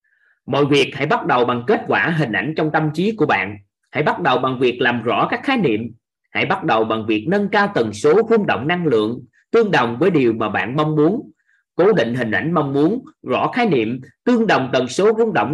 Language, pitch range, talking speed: Vietnamese, 120-180 Hz, 235 wpm